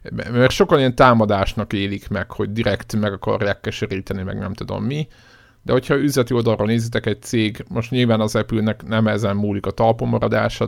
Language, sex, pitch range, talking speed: Hungarian, male, 100-115 Hz, 175 wpm